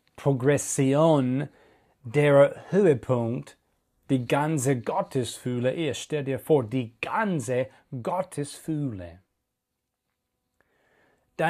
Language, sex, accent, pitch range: German, male, German, 125-165 Hz